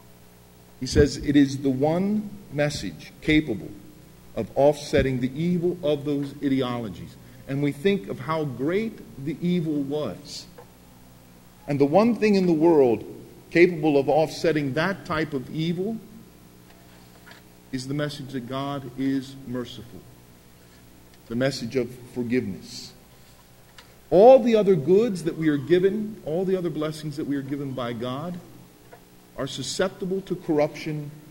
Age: 50-69